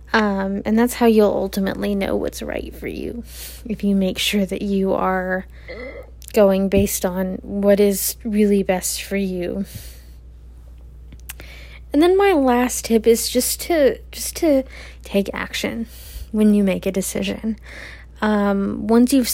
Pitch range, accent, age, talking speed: 195-220 Hz, American, 20-39, 145 wpm